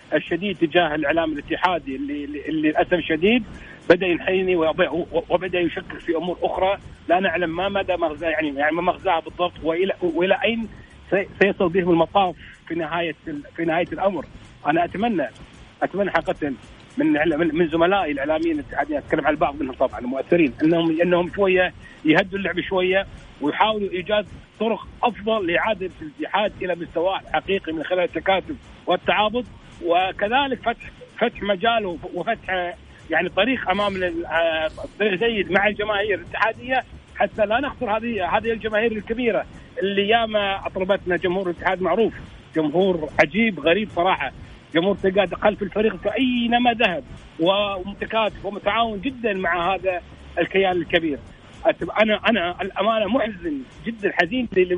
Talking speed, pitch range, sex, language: 130 wpm, 170-220 Hz, male, English